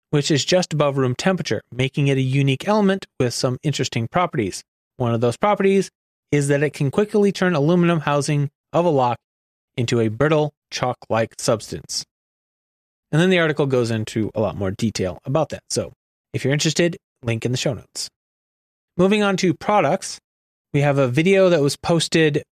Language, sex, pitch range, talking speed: English, male, 120-165 Hz, 180 wpm